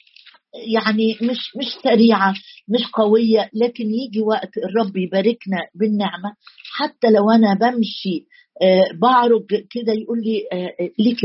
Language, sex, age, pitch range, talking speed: Arabic, female, 50-69, 195-235 Hz, 110 wpm